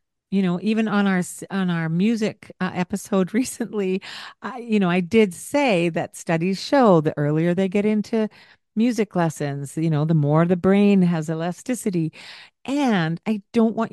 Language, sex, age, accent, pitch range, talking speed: English, female, 50-69, American, 155-210 Hz, 170 wpm